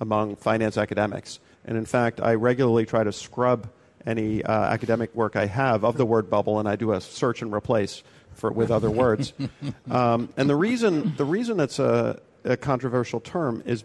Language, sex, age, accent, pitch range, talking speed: English, male, 40-59, American, 110-130 Hz, 190 wpm